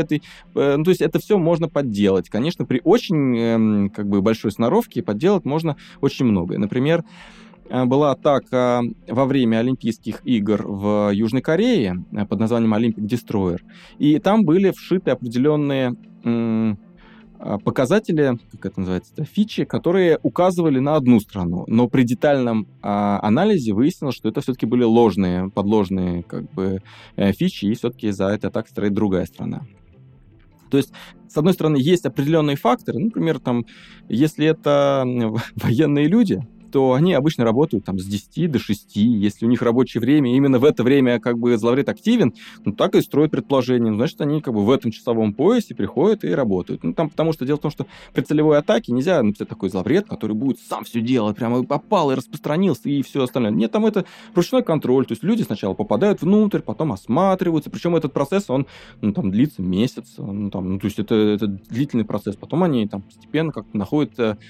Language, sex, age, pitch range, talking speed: Russian, male, 20-39, 110-160 Hz, 165 wpm